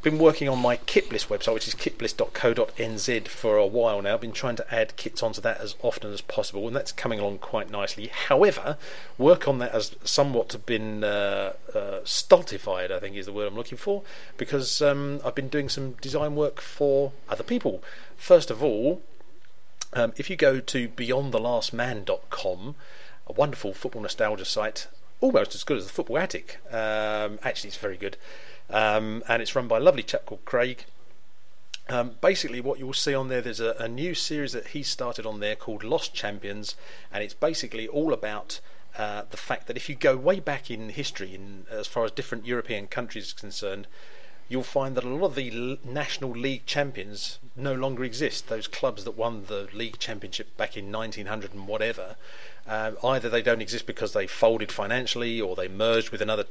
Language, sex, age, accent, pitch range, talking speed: English, male, 40-59, British, 110-140 Hz, 190 wpm